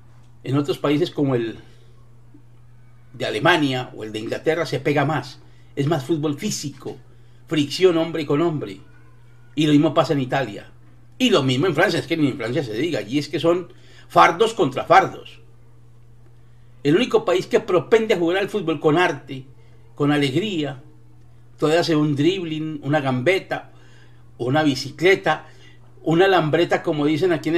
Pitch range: 120-155 Hz